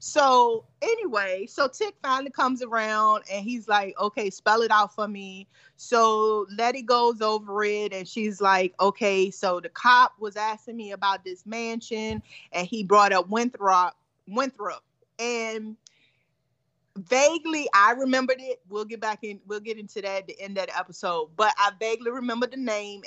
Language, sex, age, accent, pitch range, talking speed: English, female, 30-49, American, 190-225 Hz, 170 wpm